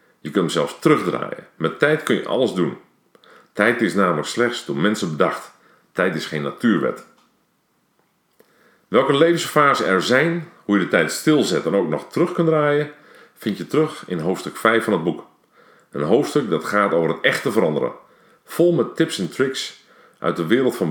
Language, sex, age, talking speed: Dutch, male, 50-69, 180 wpm